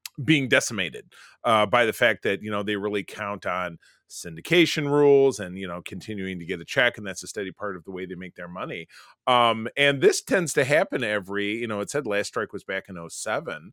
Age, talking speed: 30-49, 225 wpm